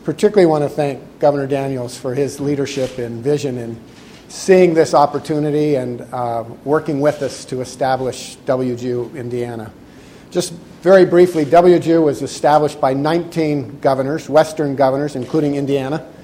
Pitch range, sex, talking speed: 130-155 Hz, male, 135 wpm